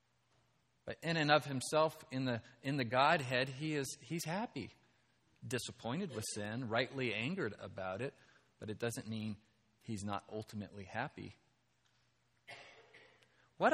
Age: 40-59